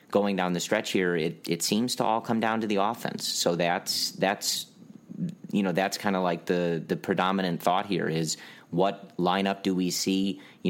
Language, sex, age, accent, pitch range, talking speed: English, male, 30-49, American, 85-95 Hz, 200 wpm